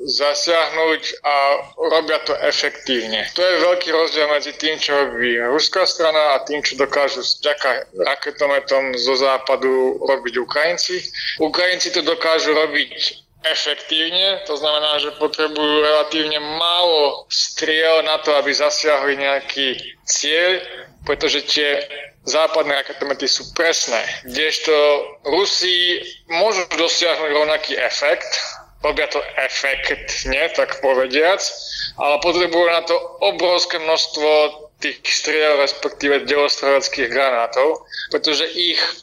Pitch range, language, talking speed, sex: 140-160 Hz, Slovak, 110 wpm, male